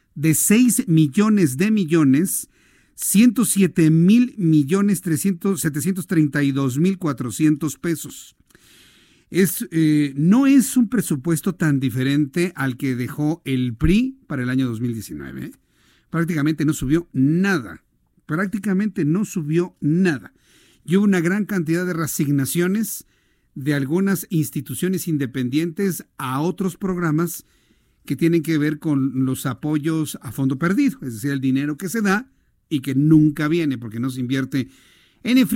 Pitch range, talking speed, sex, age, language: 140-190 Hz, 130 wpm, male, 50-69, Spanish